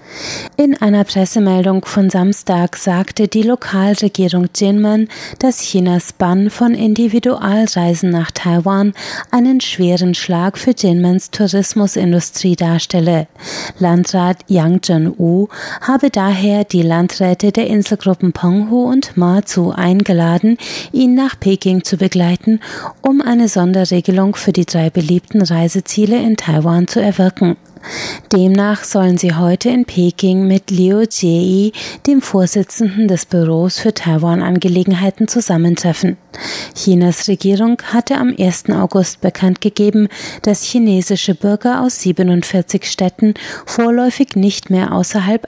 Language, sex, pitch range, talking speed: German, female, 180-215 Hz, 115 wpm